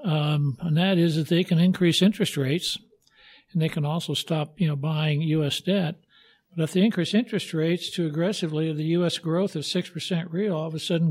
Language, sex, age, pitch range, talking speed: English, male, 60-79, 155-180 Hz, 205 wpm